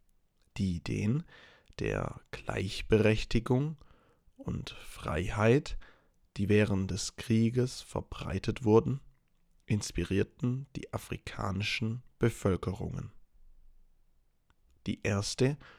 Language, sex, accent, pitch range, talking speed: English, male, German, 95-120 Hz, 70 wpm